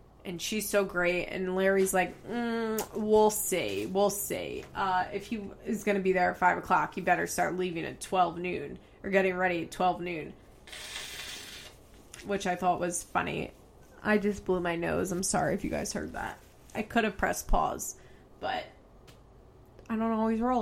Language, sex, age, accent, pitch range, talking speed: English, female, 20-39, American, 185-215 Hz, 185 wpm